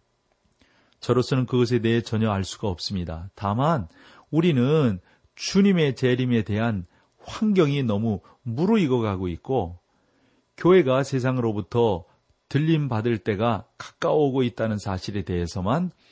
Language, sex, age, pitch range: Korean, male, 40-59, 100-140 Hz